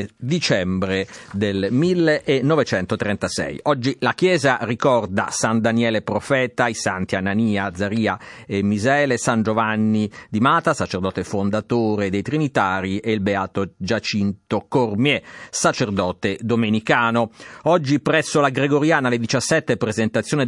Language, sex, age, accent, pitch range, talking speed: Italian, male, 50-69, native, 105-150 Hz, 110 wpm